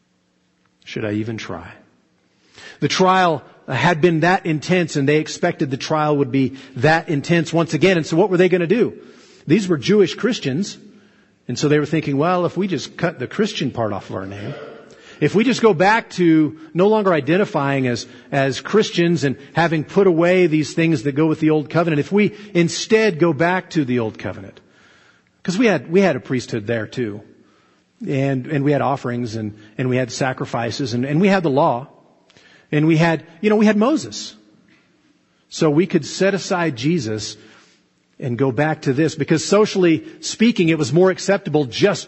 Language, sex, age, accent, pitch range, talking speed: English, male, 40-59, American, 125-175 Hz, 195 wpm